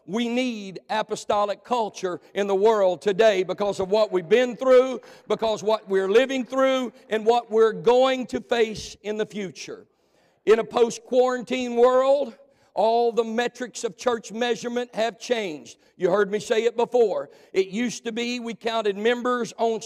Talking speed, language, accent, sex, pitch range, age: 165 wpm, English, American, male, 215-260 Hz, 50-69